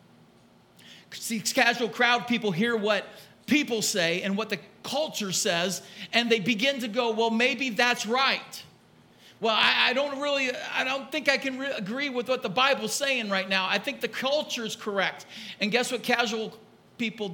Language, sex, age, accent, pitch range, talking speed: English, male, 50-69, American, 165-235 Hz, 180 wpm